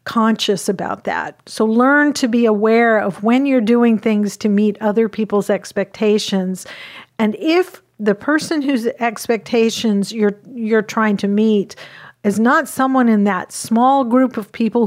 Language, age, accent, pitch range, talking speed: English, 50-69, American, 200-245 Hz, 155 wpm